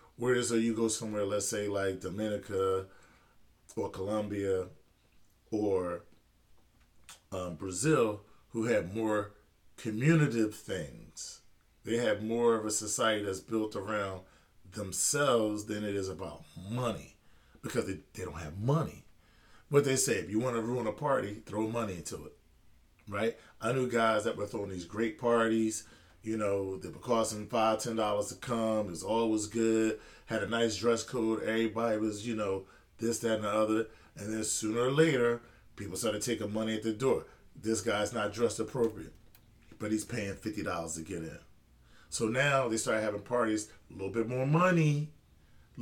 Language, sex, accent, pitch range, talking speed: English, male, American, 100-120 Hz, 165 wpm